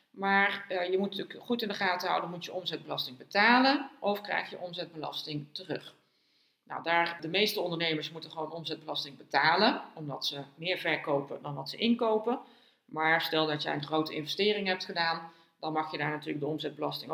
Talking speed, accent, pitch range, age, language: 180 wpm, Dutch, 155-220 Hz, 40-59, Dutch